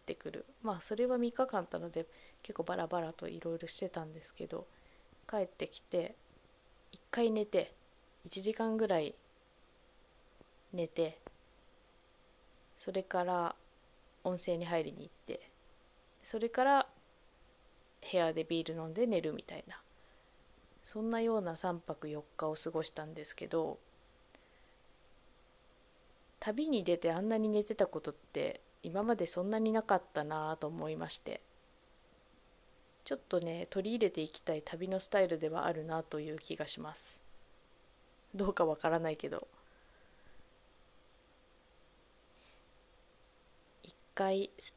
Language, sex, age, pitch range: Japanese, female, 20-39, 165-220 Hz